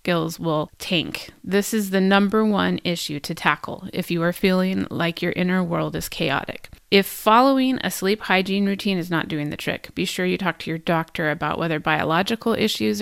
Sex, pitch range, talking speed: female, 170-200 Hz, 200 wpm